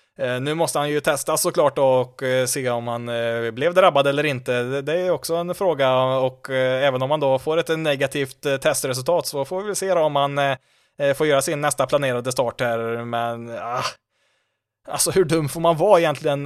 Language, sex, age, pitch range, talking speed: Swedish, male, 20-39, 125-155 Hz, 180 wpm